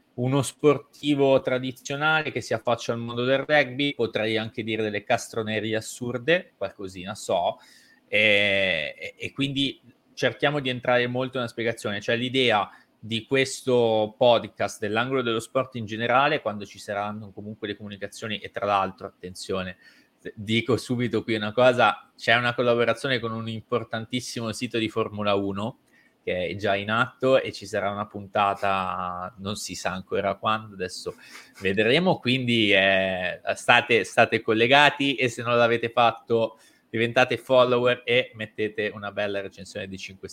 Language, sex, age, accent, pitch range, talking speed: Italian, male, 20-39, native, 105-125 Hz, 145 wpm